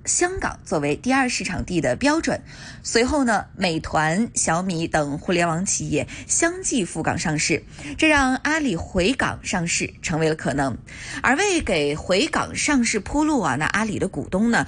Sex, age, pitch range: female, 20-39, 160-270 Hz